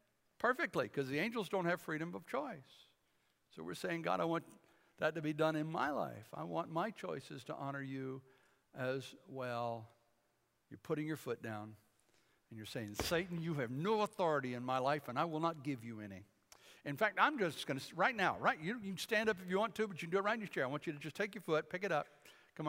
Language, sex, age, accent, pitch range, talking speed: English, male, 60-79, American, 150-215 Hz, 245 wpm